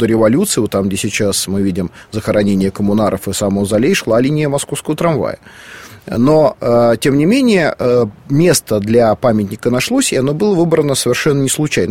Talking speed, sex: 145 wpm, male